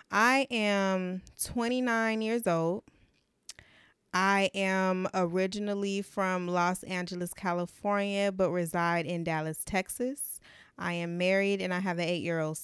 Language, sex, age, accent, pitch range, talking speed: English, female, 20-39, American, 175-200 Hz, 130 wpm